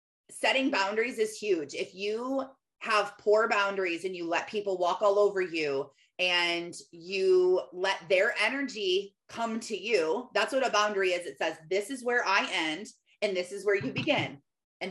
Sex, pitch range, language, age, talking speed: female, 185-235 Hz, English, 30-49, 175 wpm